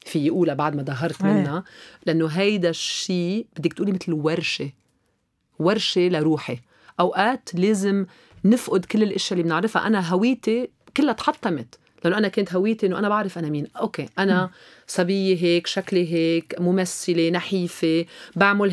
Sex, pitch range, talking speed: female, 160-215 Hz, 140 wpm